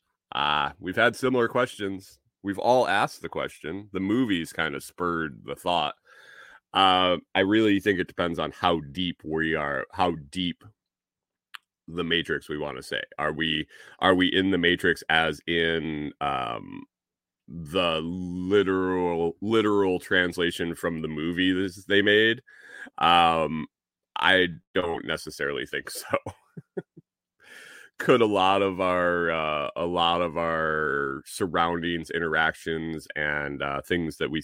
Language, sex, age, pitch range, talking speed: English, male, 30-49, 80-95 Hz, 135 wpm